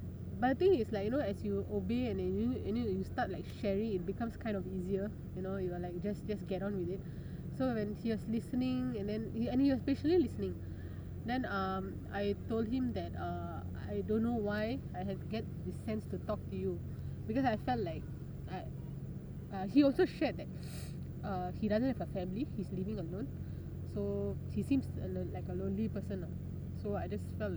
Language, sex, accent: English, female, Indian